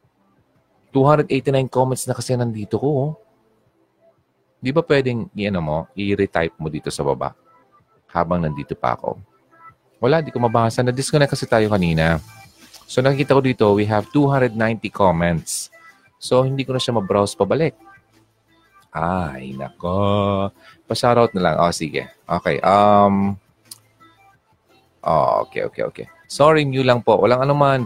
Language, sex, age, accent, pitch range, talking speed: Filipino, male, 30-49, native, 90-125 Hz, 140 wpm